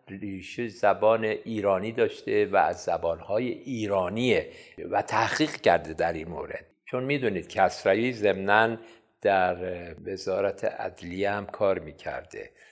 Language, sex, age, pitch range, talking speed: Persian, male, 50-69, 105-150 Hz, 115 wpm